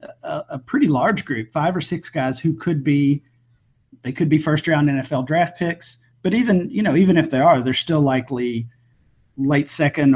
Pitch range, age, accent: 130-155 Hz, 40-59, American